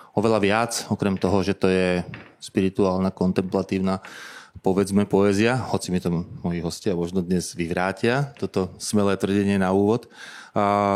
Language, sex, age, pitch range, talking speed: Slovak, male, 20-39, 95-115 Hz, 135 wpm